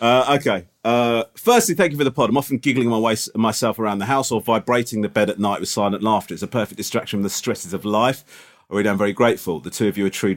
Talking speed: 270 wpm